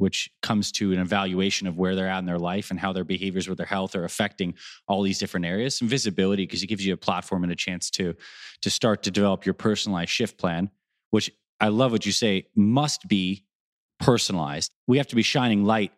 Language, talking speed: English, 225 wpm